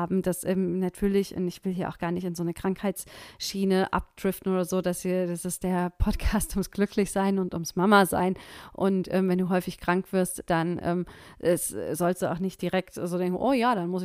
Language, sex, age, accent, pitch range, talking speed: German, female, 30-49, German, 180-205 Hz, 215 wpm